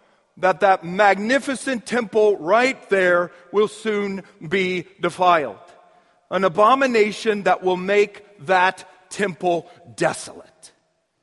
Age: 50-69